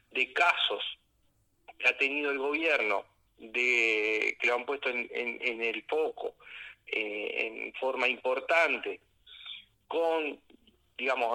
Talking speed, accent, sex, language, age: 120 wpm, Argentinian, male, Spanish, 40-59